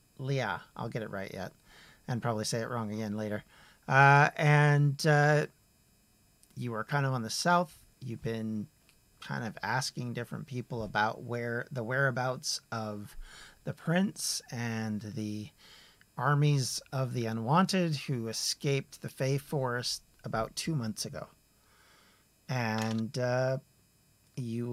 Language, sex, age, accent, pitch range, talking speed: English, male, 40-59, American, 110-145 Hz, 135 wpm